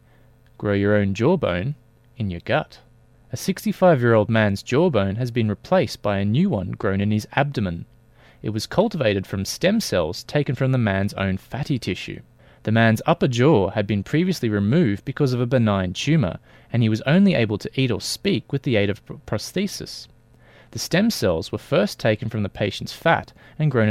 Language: English